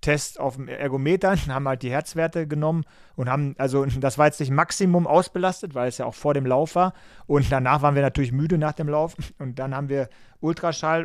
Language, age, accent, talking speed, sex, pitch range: German, 40-59, German, 215 wpm, male, 130-150 Hz